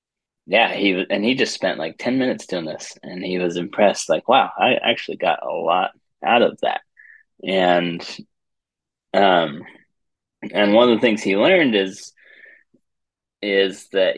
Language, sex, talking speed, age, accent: English, male, 155 wpm, 20-39, American